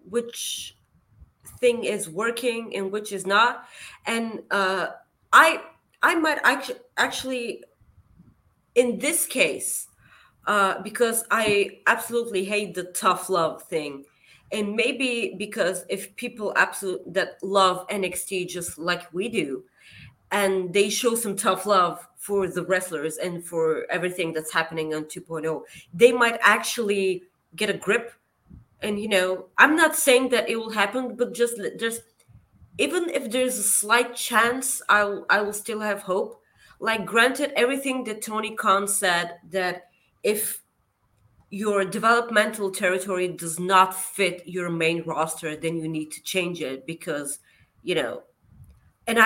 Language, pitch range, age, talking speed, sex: English, 180-235 Hz, 20-39, 140 wpm, female